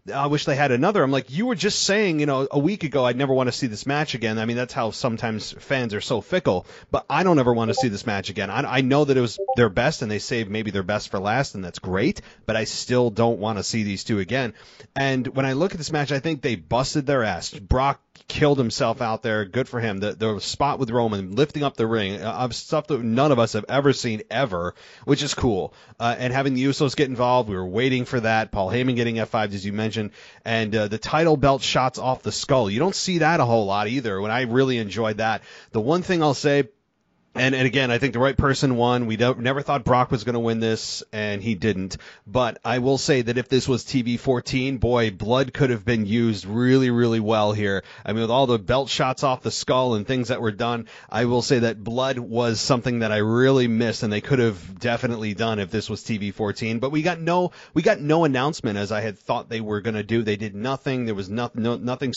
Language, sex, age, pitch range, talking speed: English, male, 30-49, 110-135 Hz, 255 wpm